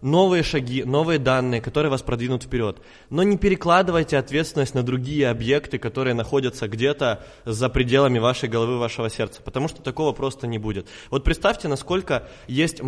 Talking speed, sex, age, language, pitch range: 160 wpm, male, 20-39, Russian, 120-150 Hz